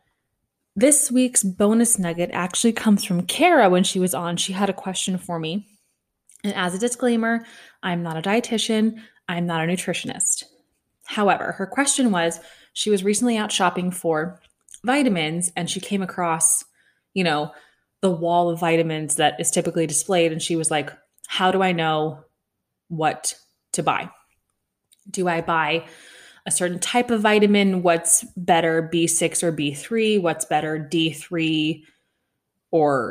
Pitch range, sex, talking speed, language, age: 165-215 Hz, female, 150 wpm, English, 20-39